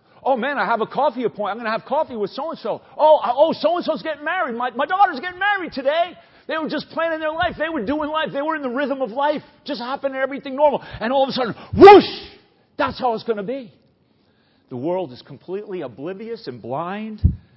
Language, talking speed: English, 225 wpm